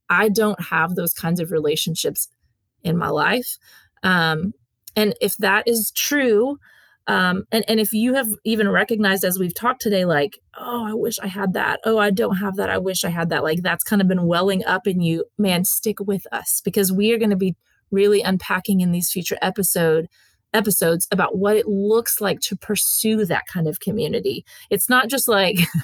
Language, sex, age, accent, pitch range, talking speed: English, female, 30-49, American, 185-230 Hz, 200 wpm